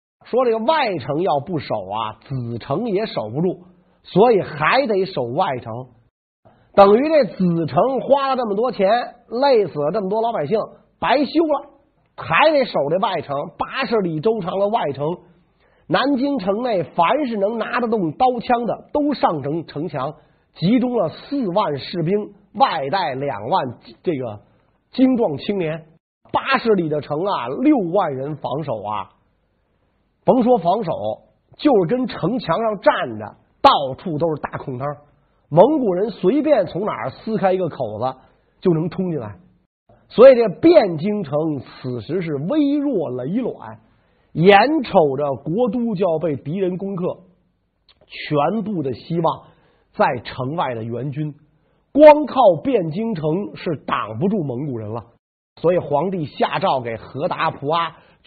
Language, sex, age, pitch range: Chinese, male, 50-69, 150-240 Hz